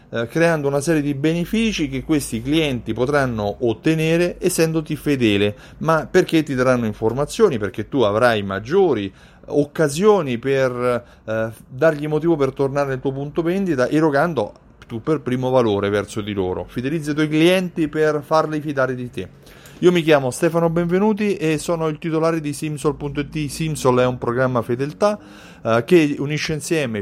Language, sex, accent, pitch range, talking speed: Italian, male, native, 125-165 Hz, 150 wpm